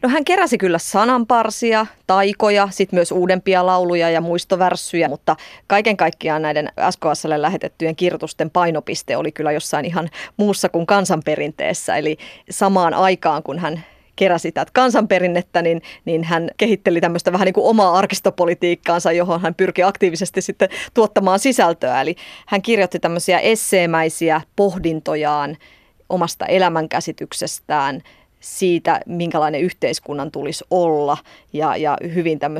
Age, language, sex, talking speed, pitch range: 30-49, Finnish, female, 125 wpm, 160-190 Hz